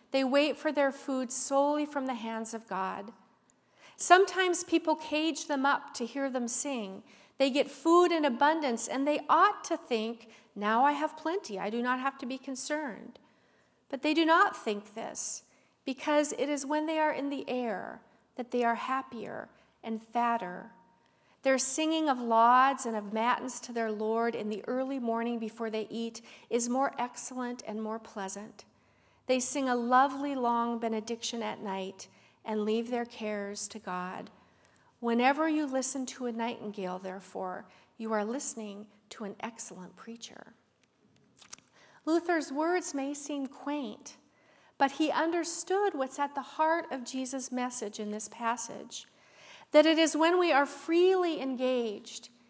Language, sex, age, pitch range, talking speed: English, female, 50-69, 225-285 Hz, 160 wpm